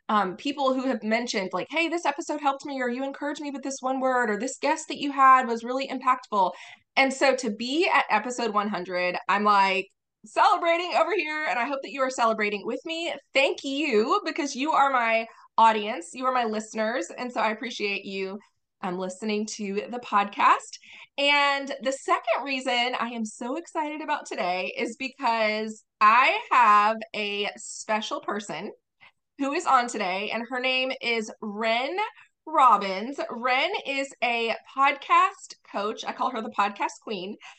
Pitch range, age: 215-285 Hz, 20-39